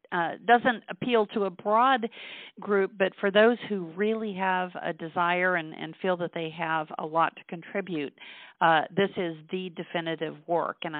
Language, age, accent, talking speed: English, 50-69, American, 175 wpm